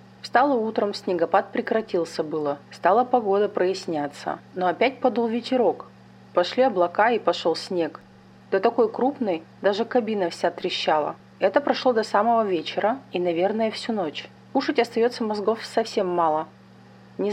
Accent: native